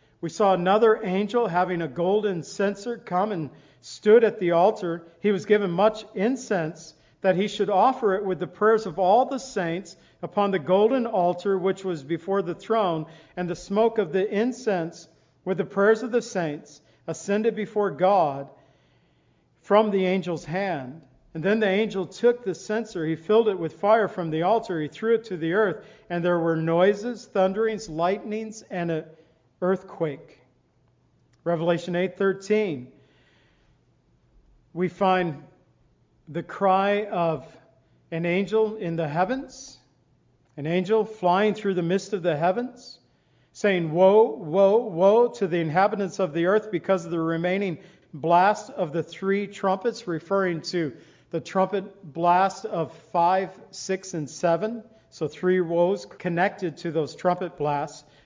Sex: male